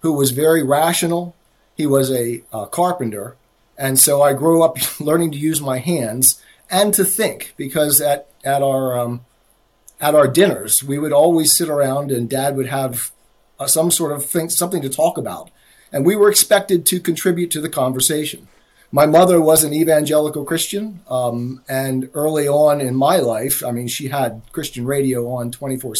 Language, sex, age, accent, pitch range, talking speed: English, male, 40-59, American, 130-165 Hz, 180 wpm